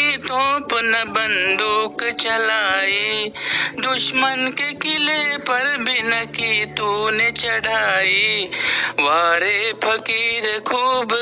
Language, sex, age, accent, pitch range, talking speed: Marathi, male, 60-79, native, 205-255 Hz, 65 wpm